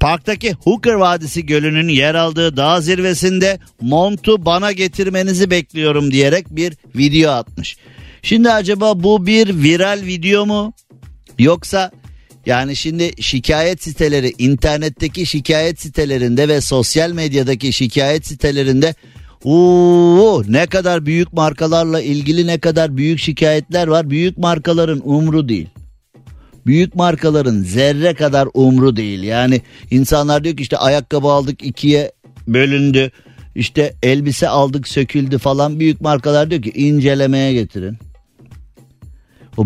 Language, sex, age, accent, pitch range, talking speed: Turkish, male, 50-69, native, 130-165 Hz, 120 wpm